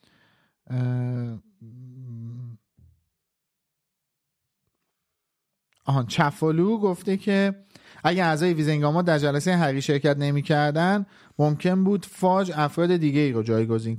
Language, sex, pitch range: Persian, male, 125-160 Hz